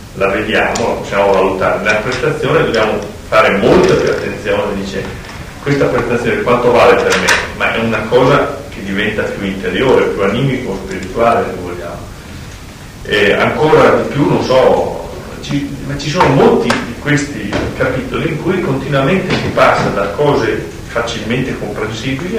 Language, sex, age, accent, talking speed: Italian, male, 40-59, native, 145 wpm